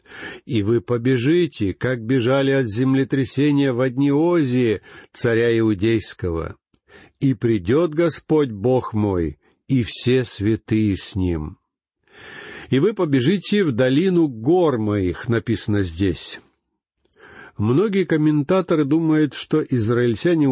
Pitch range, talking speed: 110-150 Hz, 100 wpm